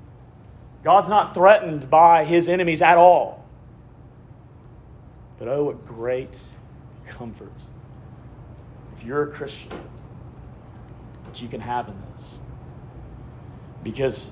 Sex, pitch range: male, 120-165 Hz